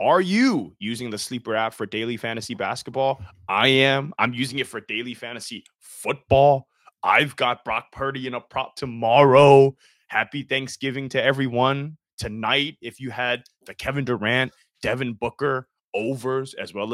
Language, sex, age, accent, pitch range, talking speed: English, male, 20-39, American, 110-135 Hz, 150 wpm